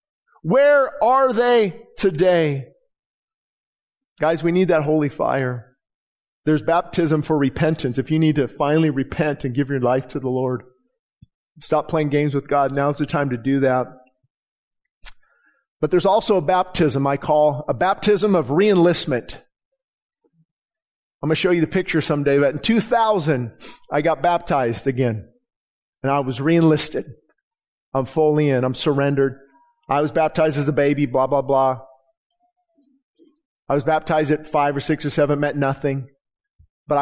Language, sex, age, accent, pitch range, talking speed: English, male, 40-59, American, 140-185 Hz, 150 wpm